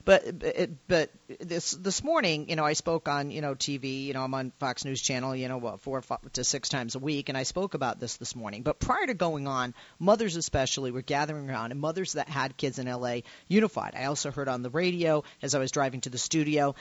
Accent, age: American, 40-59